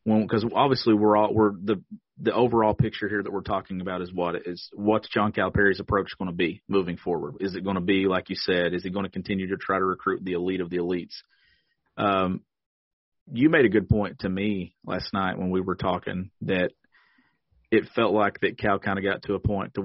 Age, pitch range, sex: 40-59, 95-110 Hz, male